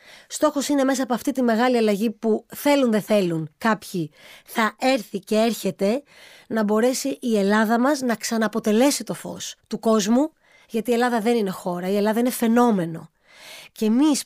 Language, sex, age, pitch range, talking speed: Greek, female, 20-39, 215-285 Hz, 170 wpm